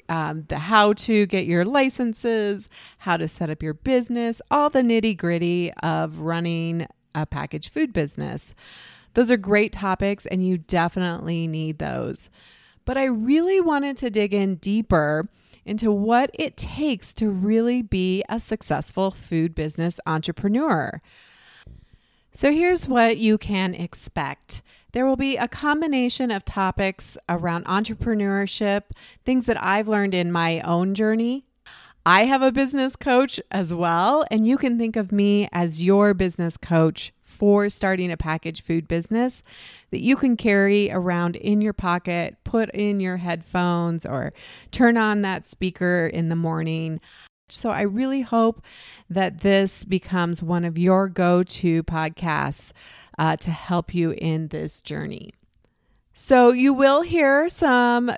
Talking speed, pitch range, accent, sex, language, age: 145 wpm, 170-235 Hz, American, female, English, 30-49